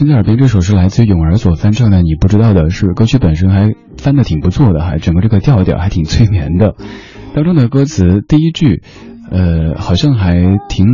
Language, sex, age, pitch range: Chinese, male, 20-39, 85-115 Hz